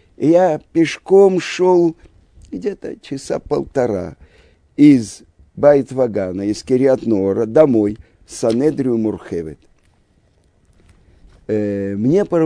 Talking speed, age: 70 wpm, 50-69